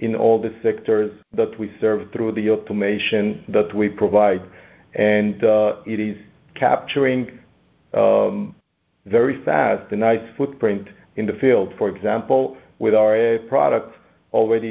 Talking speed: 140 wpm